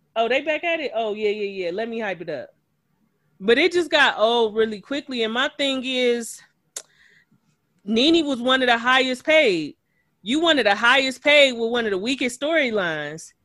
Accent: American